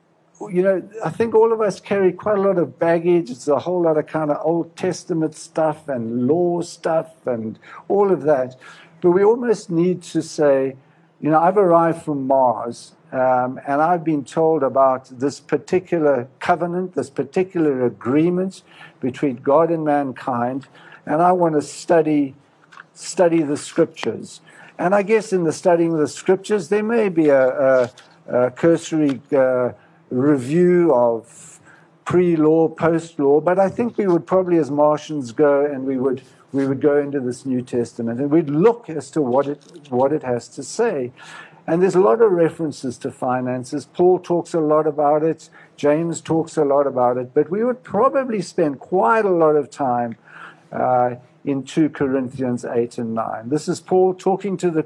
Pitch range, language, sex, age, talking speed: 135-175 Hz, English, male, 60-79, 175 wpm